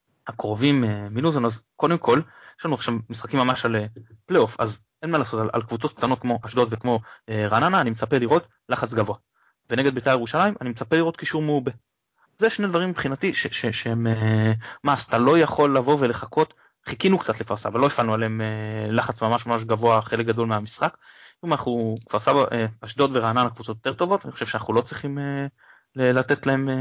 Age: 20-39